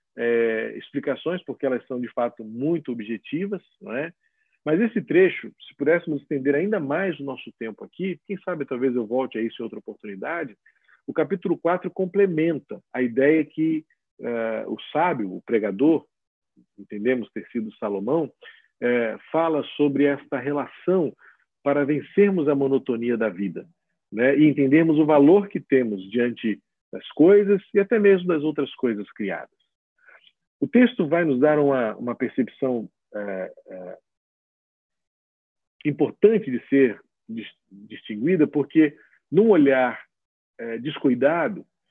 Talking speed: 135 wpm